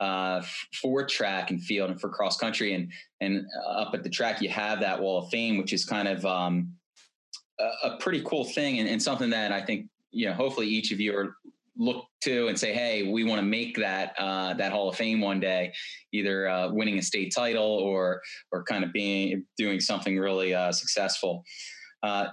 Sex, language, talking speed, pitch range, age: male, English, 210 wpm, 95-140 Hz, 20-39